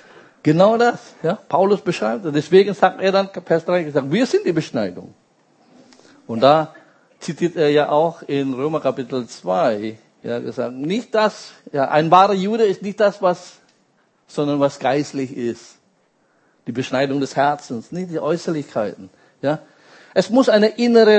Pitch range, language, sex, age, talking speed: 150-210 Hz, German, male, 50-69, 155 wpm